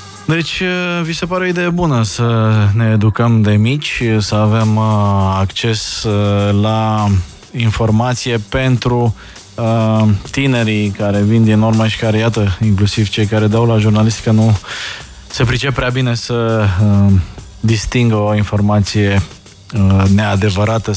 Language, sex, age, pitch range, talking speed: Romanian, male, 20-39, 105-130 Hz, 120 wpm